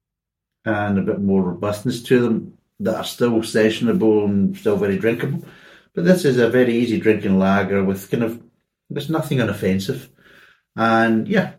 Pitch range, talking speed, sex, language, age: 90-115 Hz, 160 wpm, male, English, 60-79